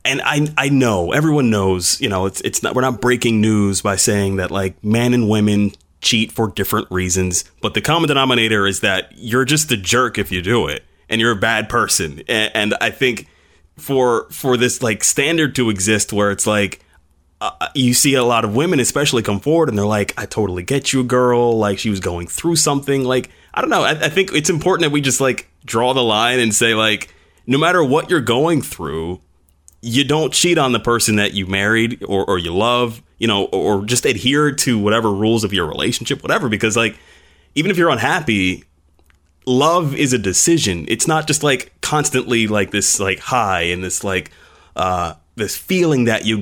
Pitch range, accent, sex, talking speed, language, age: 95-130 Hz, American, male, 210 wpm, English, 20-39